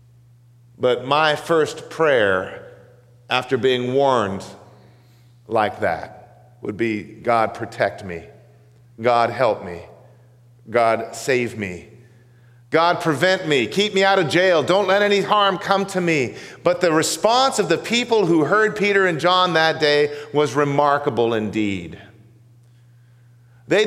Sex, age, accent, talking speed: male, 40-59, American, 130 wpm